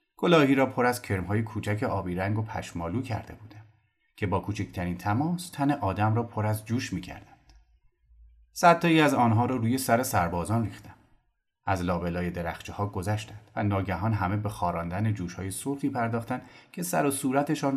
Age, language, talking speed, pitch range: 30-49, Persian, 165 wpm, 95-130 Hz